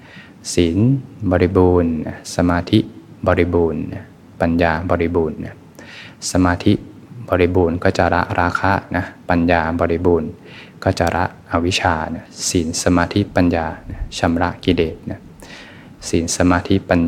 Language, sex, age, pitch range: Thai, male, 20-39, 85-95 Hz